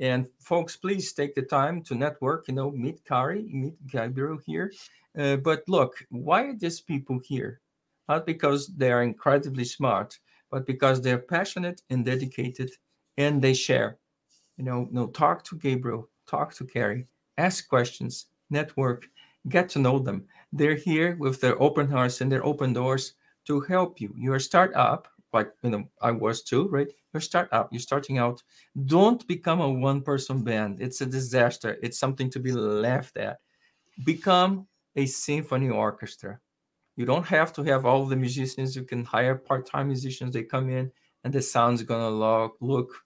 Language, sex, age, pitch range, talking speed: English, male, 50-69, 125-150 Hz, 170 wpm